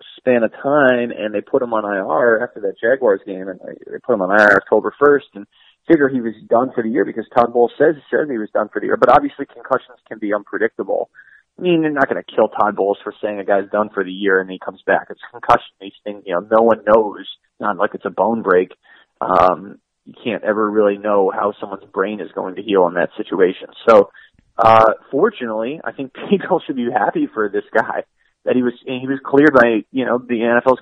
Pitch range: 110-135 Hz